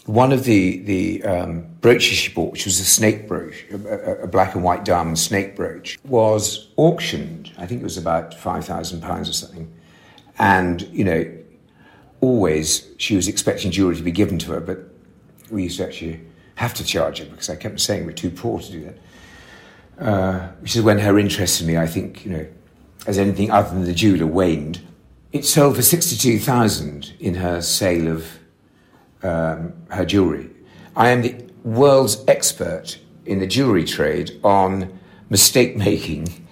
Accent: British